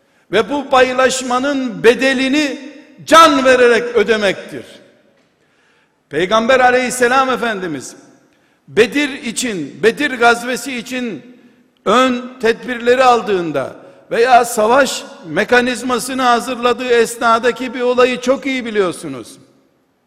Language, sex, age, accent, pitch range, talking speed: Turkish, male, 60-79, native, 230-260 Hz, 85 wpm